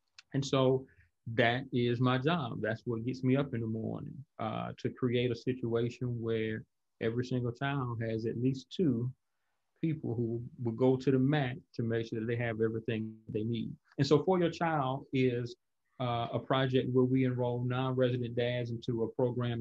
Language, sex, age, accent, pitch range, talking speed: English, male, 30-49, American, 115-125 Hz, 185 wpm